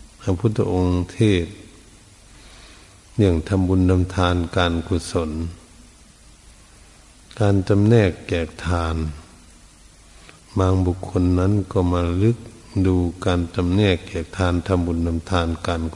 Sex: male